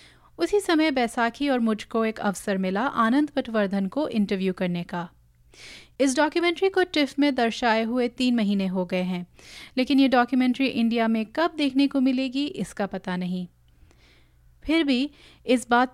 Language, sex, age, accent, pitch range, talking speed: Hindi, female, 30-49, native, 200-265 Hz, 160 wpm